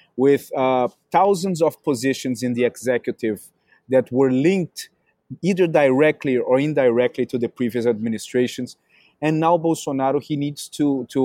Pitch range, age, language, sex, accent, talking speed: 125-160 Hz, 30-49, English, male, Brazilian, 140 wpm